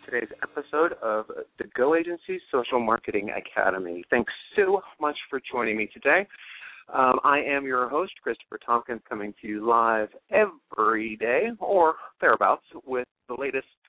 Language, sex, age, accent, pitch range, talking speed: English, male, 40-59, American, 125-205 Hz, 145 wpm